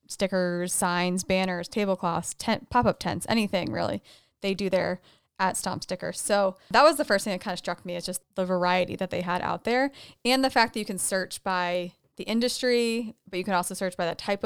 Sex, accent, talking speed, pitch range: female, American, 220 wpm, 180-205 Hz